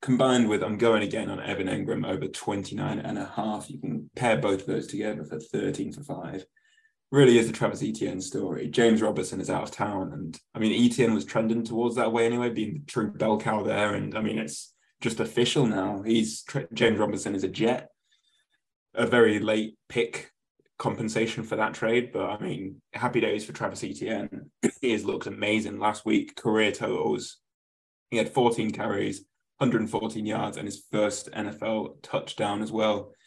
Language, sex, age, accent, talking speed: English, male, 20-39, British, 185 wpm